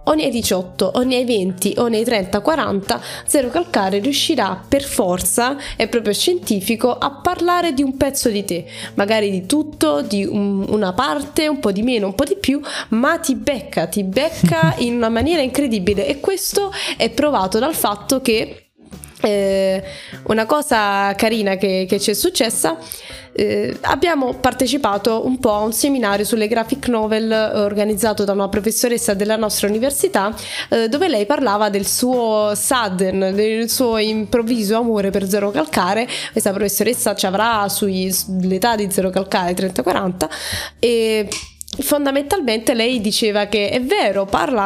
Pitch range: 200-265 Hz